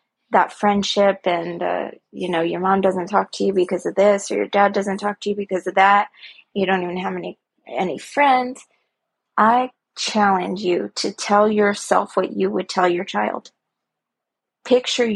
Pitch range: 185-220 Hz